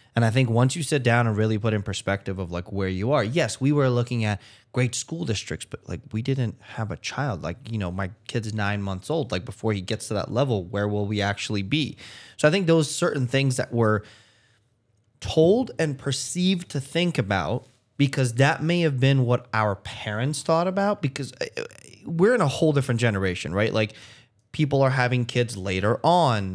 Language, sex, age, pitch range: English, male, 20-39, 110-140 Hz